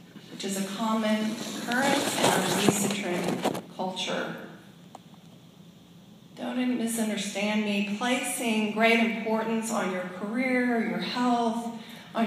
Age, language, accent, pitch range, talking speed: 40-59, English, American, 185-220 Hz, 100 wpm